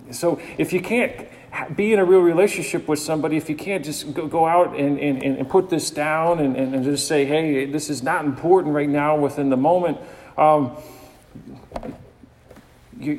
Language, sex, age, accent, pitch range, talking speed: English, male, 40-59, American, 120-150 Hz, 175 wpm